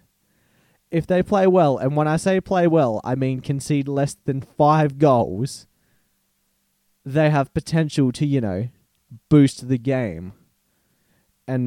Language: English